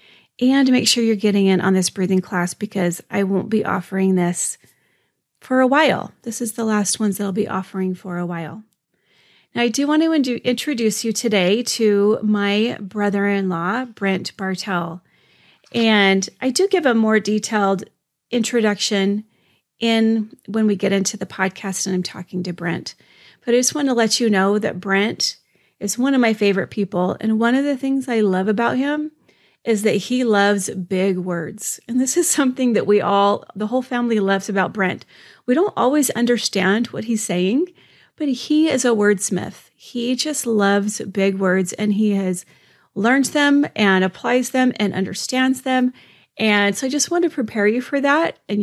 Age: 30-49